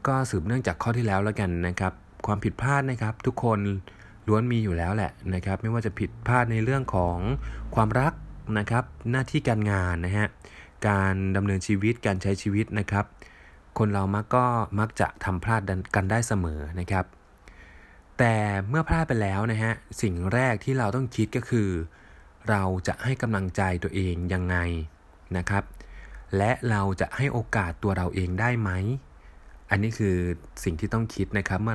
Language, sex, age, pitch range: Thai, male, 20-39, 90-115 Hz